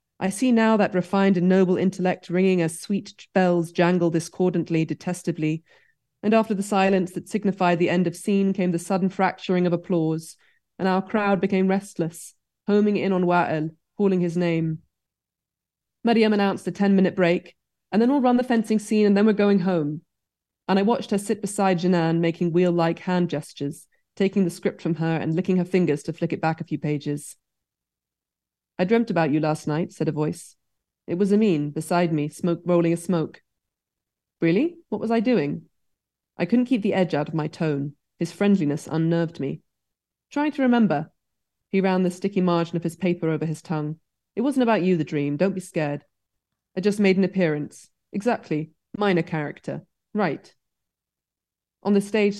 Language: English